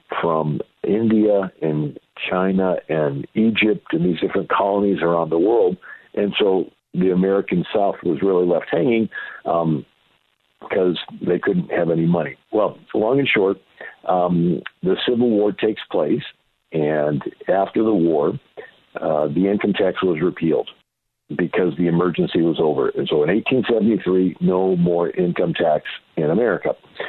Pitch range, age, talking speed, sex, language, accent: 85-105 Hz, 60-79, 140 wpm, male, English, American